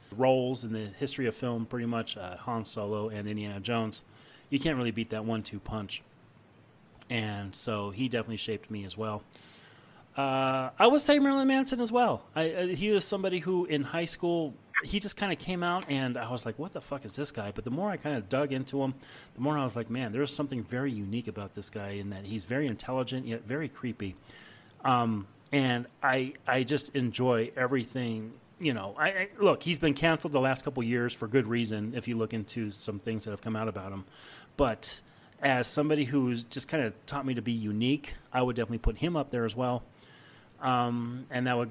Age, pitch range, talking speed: 30-49, 110-135 Hz, 215 wpm